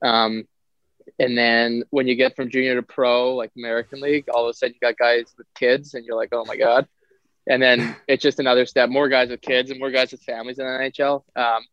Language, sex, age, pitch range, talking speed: English, male, 20-39, 115-130 Hz, 240 wpm